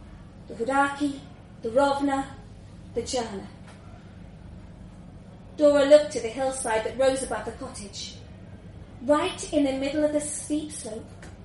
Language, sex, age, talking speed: English, female, 30-49, 125 wpm